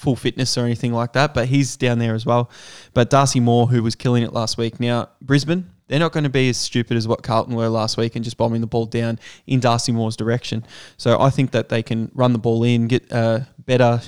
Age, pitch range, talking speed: 20-39, 115-125 Hz, 250 wpm